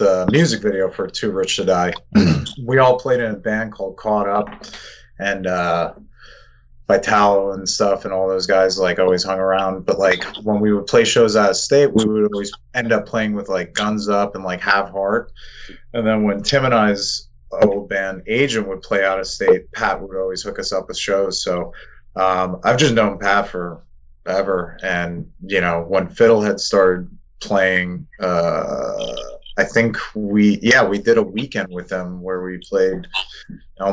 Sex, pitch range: male, 90-105 Hz